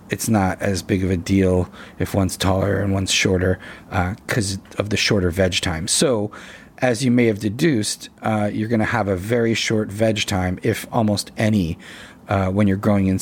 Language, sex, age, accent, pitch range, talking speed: English, male, 30-49, American, 100-115 Hz, 200 wpm